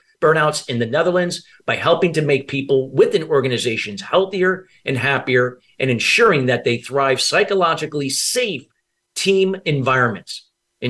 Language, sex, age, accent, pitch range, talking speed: English, male, 50-69, American, 135-180 Hz, 130 wpm